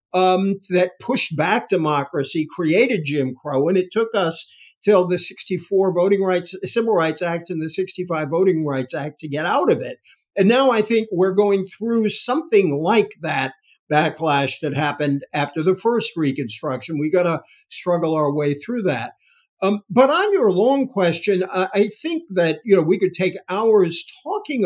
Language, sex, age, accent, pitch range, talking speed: English, male, 60-79, American, 160-215 Hz, 175 wpm